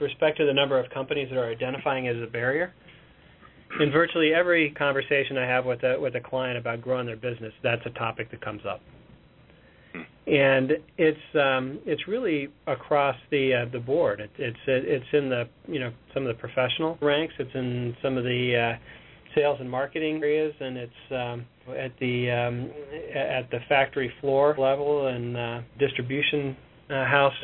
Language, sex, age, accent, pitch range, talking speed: English, male, 40-59, American, 125-150 Hz, 180 wpm